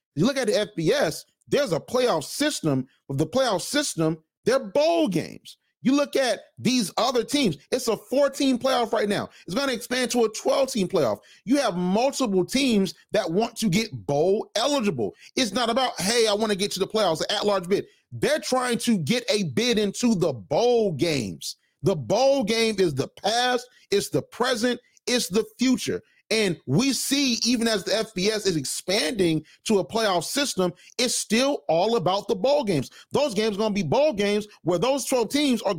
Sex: male